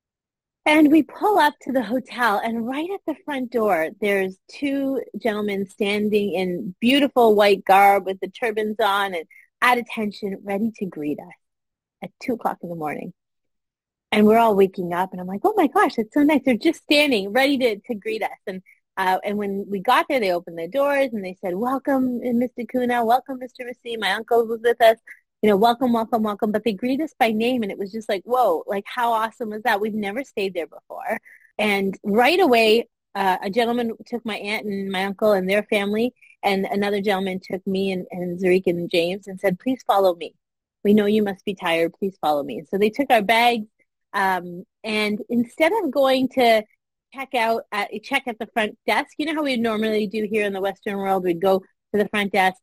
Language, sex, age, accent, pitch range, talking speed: English, female, 30-49, American, 195-245 Hz, 215 wpm